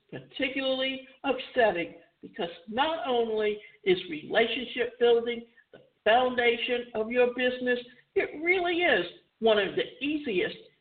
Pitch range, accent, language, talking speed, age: 230-295 Hz, American, English, 110 wpm, 60-79